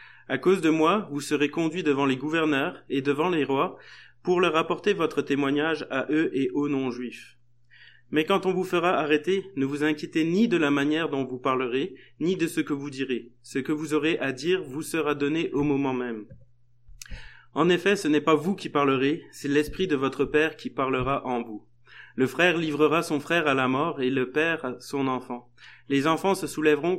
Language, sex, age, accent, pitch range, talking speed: French, male, 20-39, French, 135-165 Hz, 205 wpm